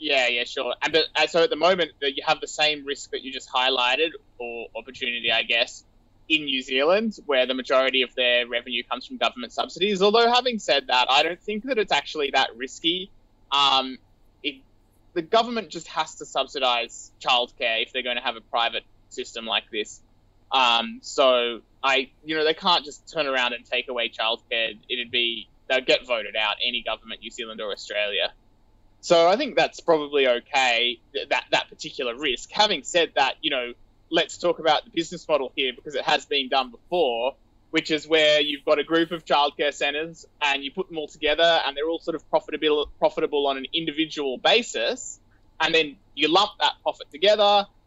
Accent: Australian